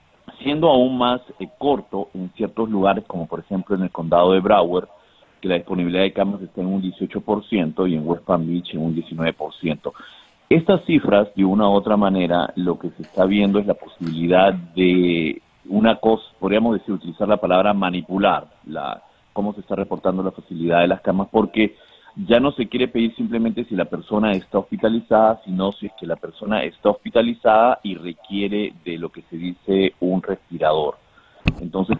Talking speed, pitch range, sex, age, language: 180 wpm, 90-105 Hz, male, 40-59, Spanish